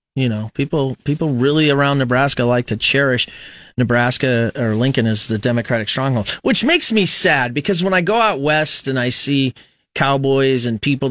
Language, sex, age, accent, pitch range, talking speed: English, male, 30-49, American, 115-150 Hz, 180 wpm